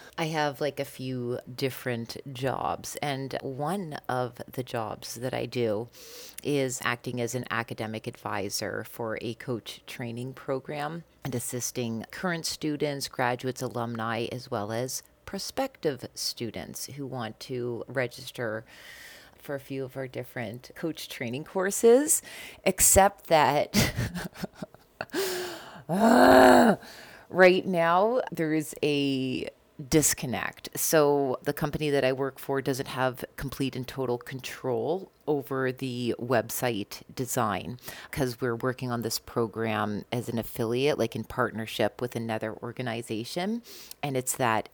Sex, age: female, 30-49